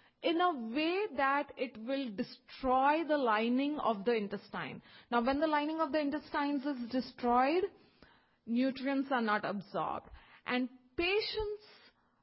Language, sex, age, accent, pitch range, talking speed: English, female, 30-49, Indian, 220-285 Hz, 130 wpm